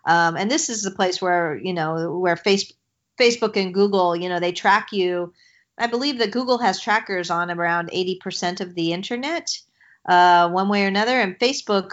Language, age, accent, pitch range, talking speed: English, 40-59, American, 175-210 Hz, 190 wpm